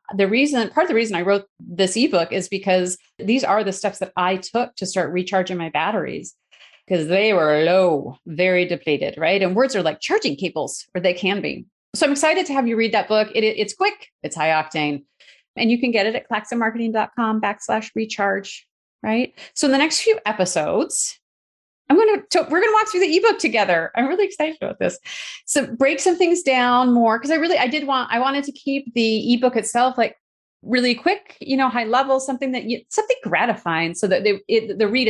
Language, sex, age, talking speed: English, female, 30-49, 215 wpm